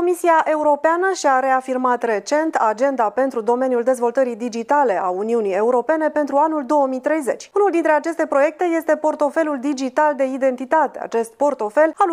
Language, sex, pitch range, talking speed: Romanian, female, 240-310 Hz, 140 wpm